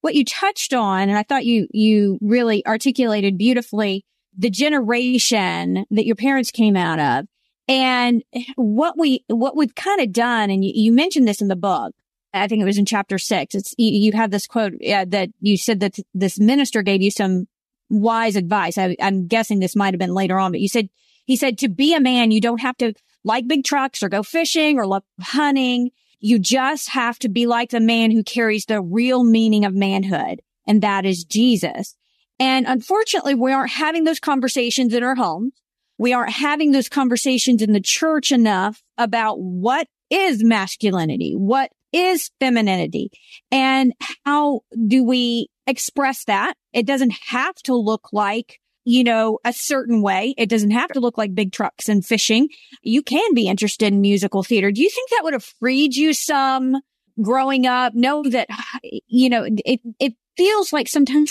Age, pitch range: 30-49, 210-265 Hz